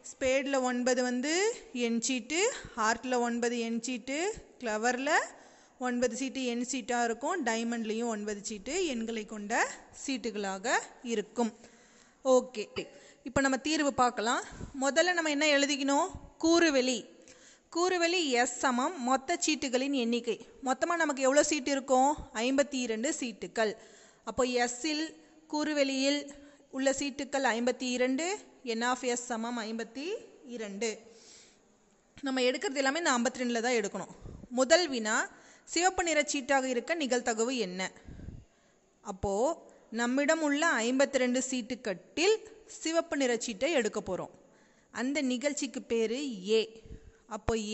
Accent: native